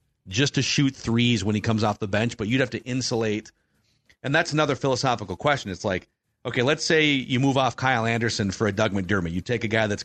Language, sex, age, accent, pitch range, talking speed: English, male, 40-59, American, 105-130 Hz, 235 wpm